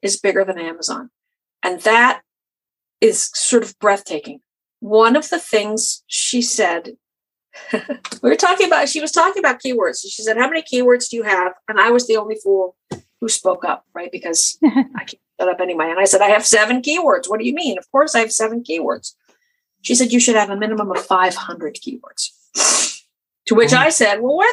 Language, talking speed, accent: English, 200 wpm, American